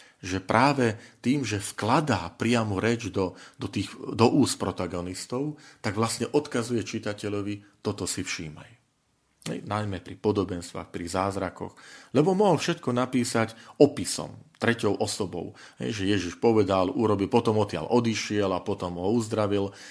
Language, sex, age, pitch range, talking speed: Slovak, male, 40-59, 95-120 Hz, 130 wpm